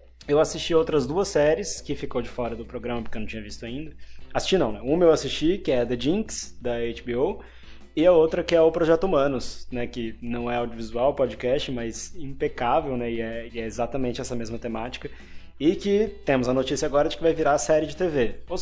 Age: 20-39